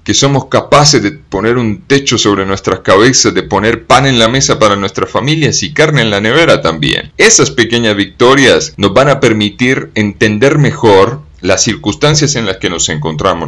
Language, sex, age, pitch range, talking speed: English, male, 30-49, 95-130 Hz, 180 wpm